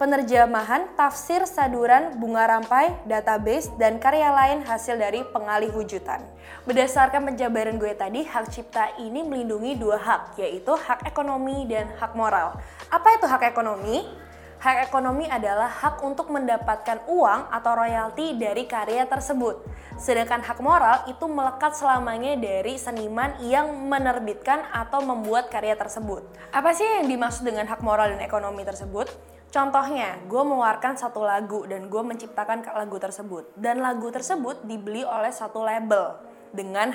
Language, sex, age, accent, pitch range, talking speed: Indonesian, female, 20-39, native, 215-275 Hz, 140 wpm